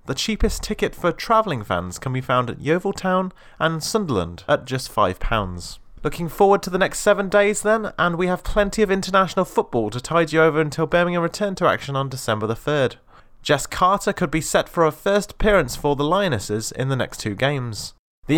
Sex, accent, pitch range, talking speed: male, British, 140-185 Hz, 200 wpm